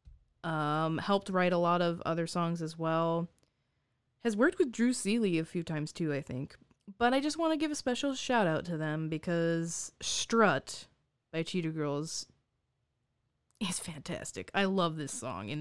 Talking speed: 175 wpm